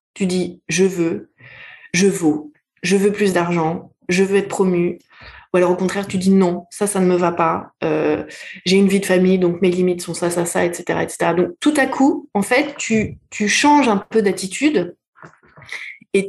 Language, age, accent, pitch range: French, 20-39, French, 180-225 Hz